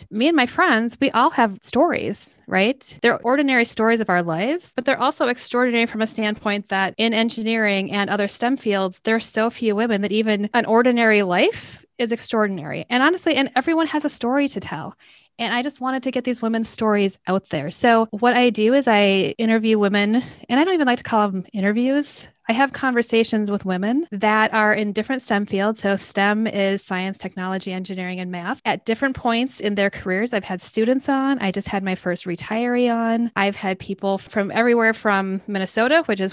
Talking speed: 205 wpm